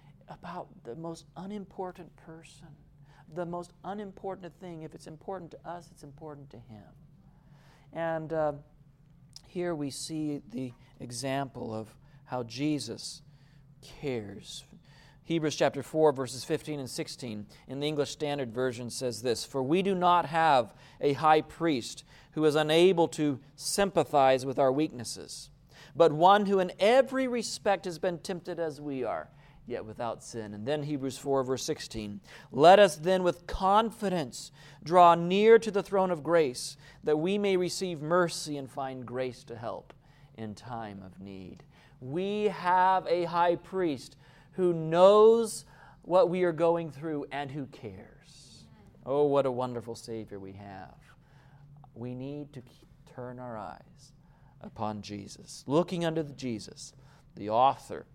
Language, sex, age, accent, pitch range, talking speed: English, male, 40-59, American, 135-170 Hz, 145 wpm